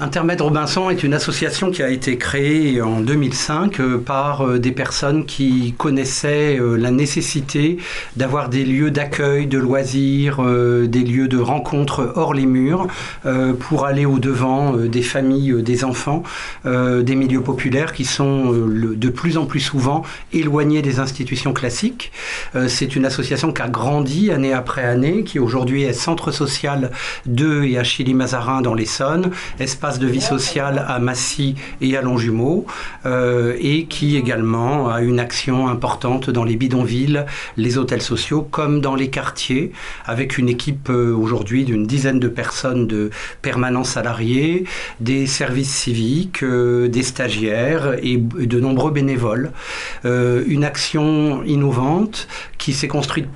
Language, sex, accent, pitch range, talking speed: French, male, French, 125-145 Hz, 145 wpm